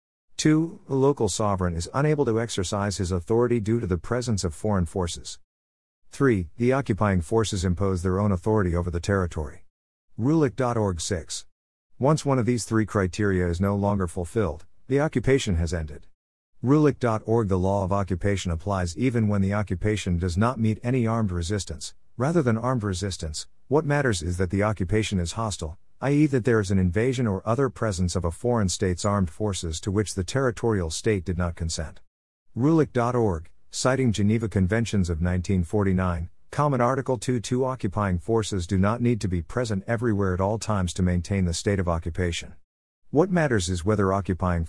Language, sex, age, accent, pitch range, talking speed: English, male, 50-69, American, 90-115 Hz, 170 wpm